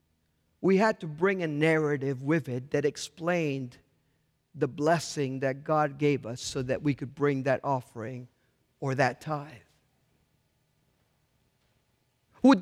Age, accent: 50-69, American